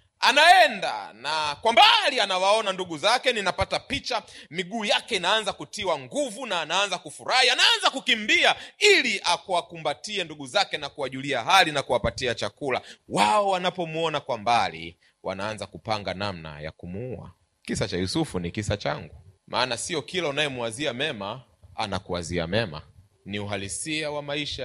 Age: 30-49